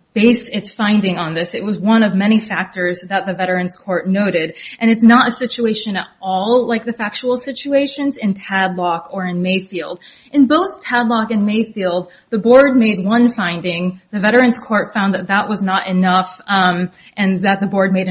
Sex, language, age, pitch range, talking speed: female, English, 20-39, 190-235 Hz, 190 wpm